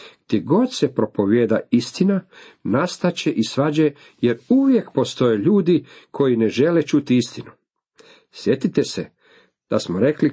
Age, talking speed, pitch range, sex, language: 50-69, 120 wpm, 110-150 Hz, male, Croatian